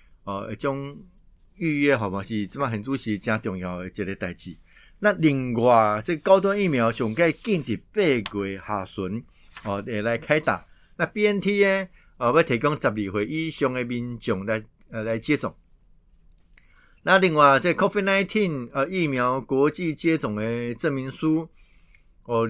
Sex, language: male, Chinese